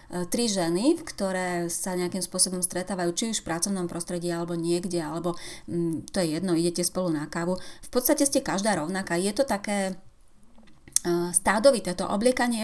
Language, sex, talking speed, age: Slovak, female, 160 wpm, 30-49